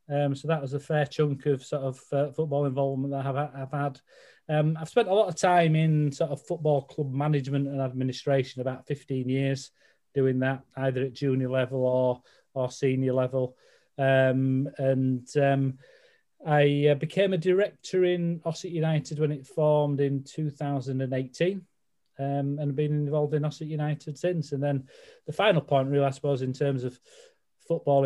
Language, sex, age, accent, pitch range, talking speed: English, male, 30-49, British, 130-150 Hz, 170 wpm